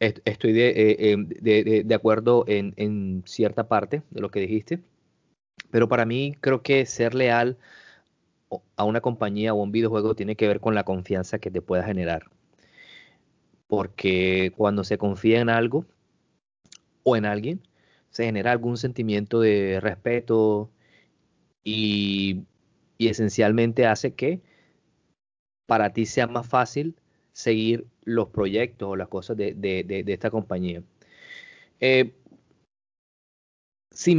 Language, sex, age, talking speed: Spanish, male, 30-49, 135 wpm